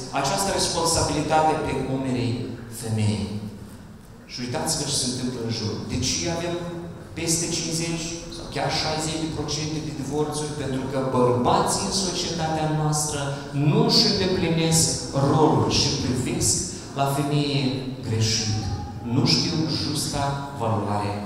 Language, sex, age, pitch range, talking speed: Romanian, male, 40-59, 125-190 Hz, 120 wpm